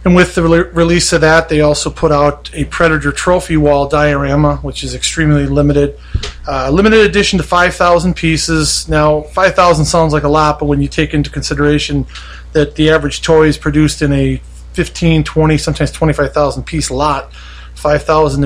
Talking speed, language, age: 170 wpm, English, 30-49